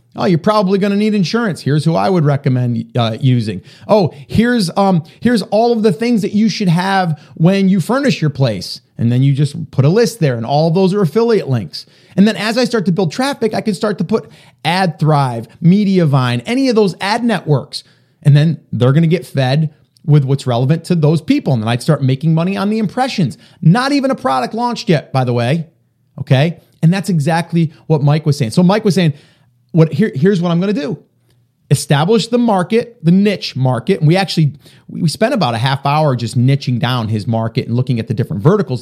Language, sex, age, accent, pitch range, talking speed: English, male, 30-49, American, 130-195 Hz, 220 wpm